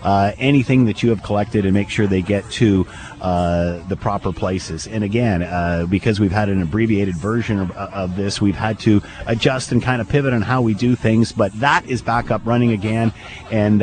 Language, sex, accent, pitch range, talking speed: English, male, American, 105-135 Hz, 215 wpm